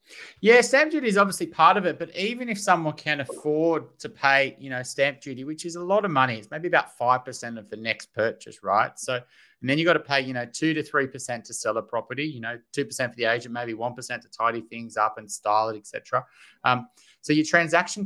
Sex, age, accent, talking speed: male, 30-49, Australian, 250 wpm